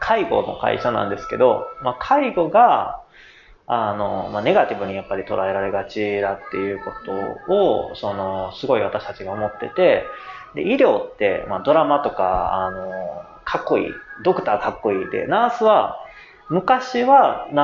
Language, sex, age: Japanese, male, 30-49